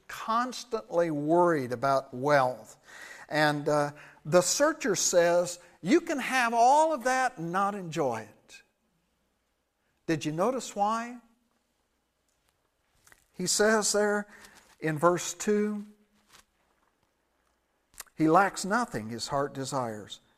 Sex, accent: male, American